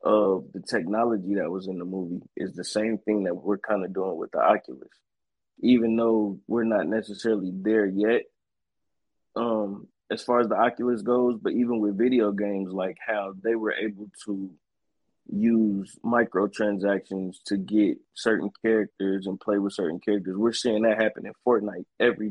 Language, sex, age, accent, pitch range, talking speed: English, male, 20-39, American, 105-115 Hz, 170 wpm